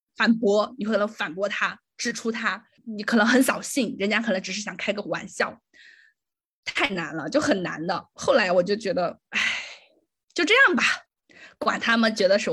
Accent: native